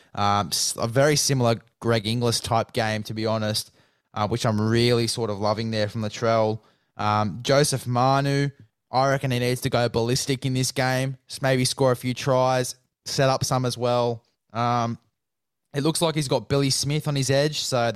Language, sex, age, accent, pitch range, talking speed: English, male, 20-39, Australian, 110-130 Hz, 195 wpm